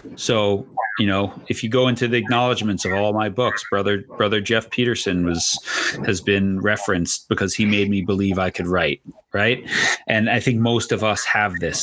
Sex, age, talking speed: male, 30-49, 195 wpm